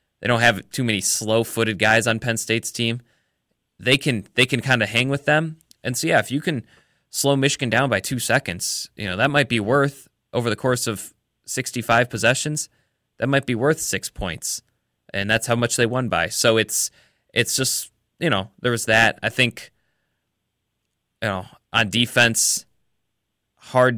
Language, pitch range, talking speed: English, 110-130 Hz, 185 wpm